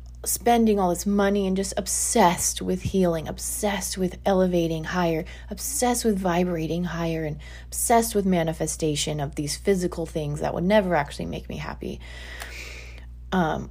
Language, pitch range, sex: English, 150-200 Hz, female